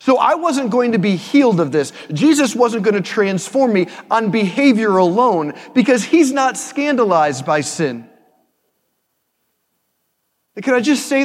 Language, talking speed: English, 150 wpm